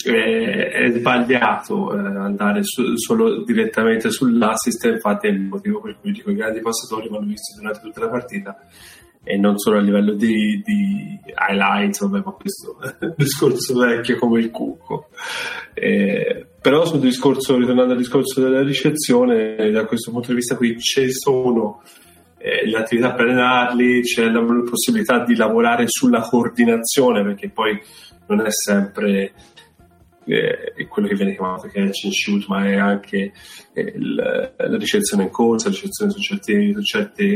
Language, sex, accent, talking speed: Italian, male, native, 160 wpm